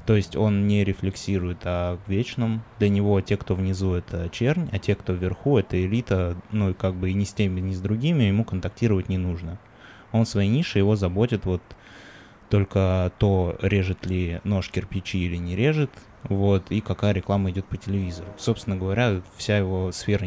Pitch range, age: 90-110 Hz, 20-39